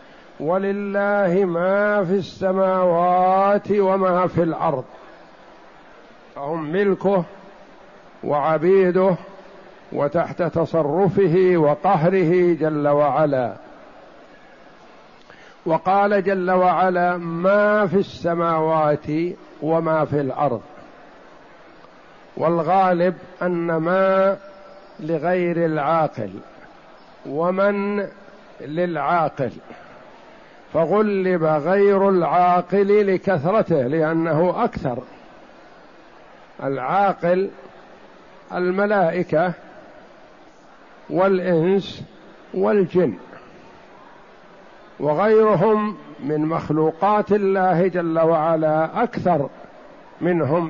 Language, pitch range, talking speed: Arabic, 165-195 Hz, 60 wpm